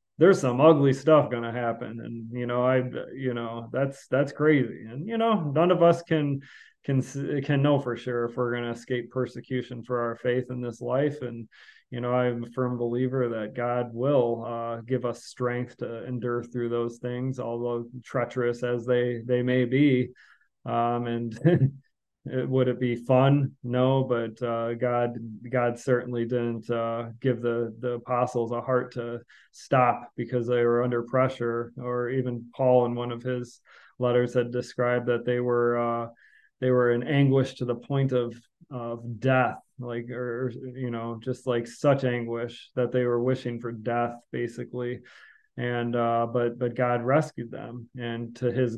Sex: male